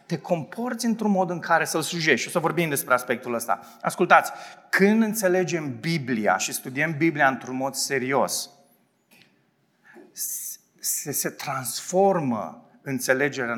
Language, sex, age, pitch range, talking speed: Romanian, male, 30-49, 135-200 Hz, 125 wpm